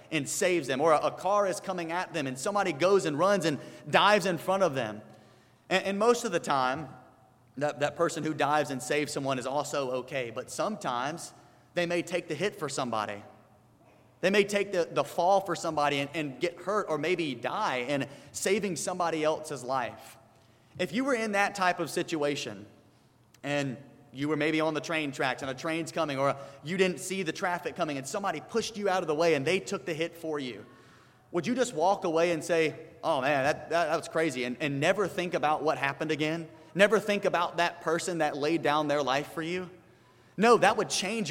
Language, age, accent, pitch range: English, 30-49, American, 145-185 Hz